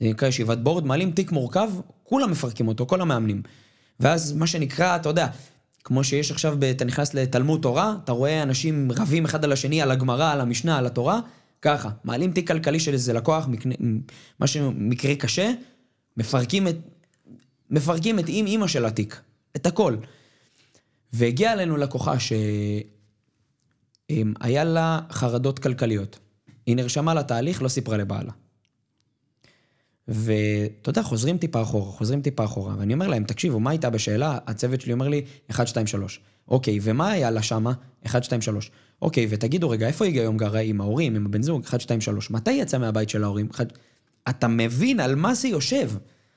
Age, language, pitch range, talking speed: 20-39, Hebrew, 115-160 Hz, 165 wpm